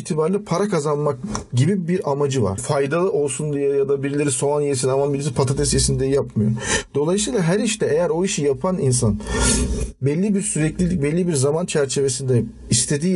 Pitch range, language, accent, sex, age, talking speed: 135-185 Hz, English, Turkish, male, 40-59, 165 wpm